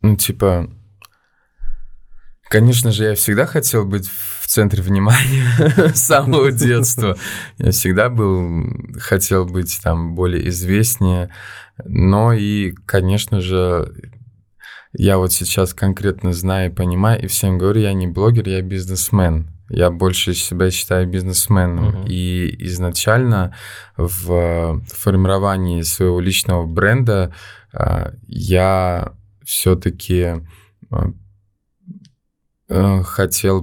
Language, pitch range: Russian, 90-105 Hz